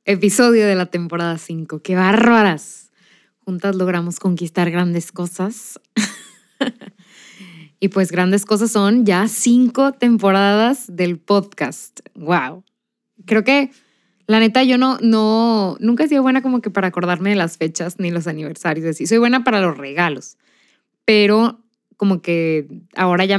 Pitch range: 185-235 Hz